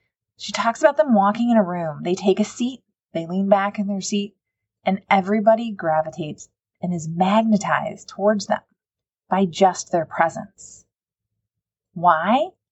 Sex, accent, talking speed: female, American, 145 wpm